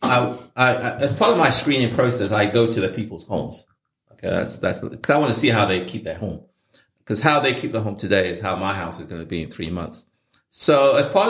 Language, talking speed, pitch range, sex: English, 255 wpm, 100-130 Hz, male